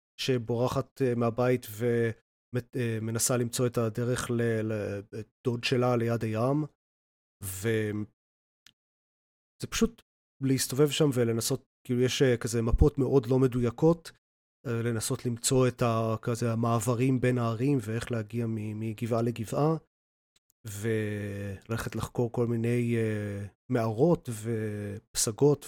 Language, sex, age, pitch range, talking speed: Hebrew, male, 30-49, 110-130 Hz, 90 wpm